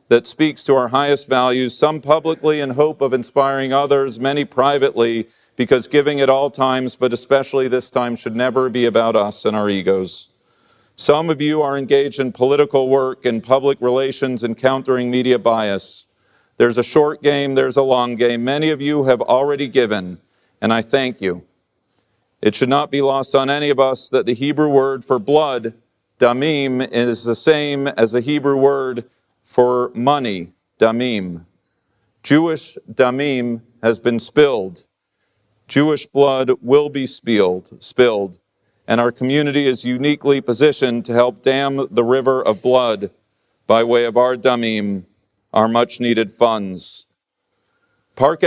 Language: English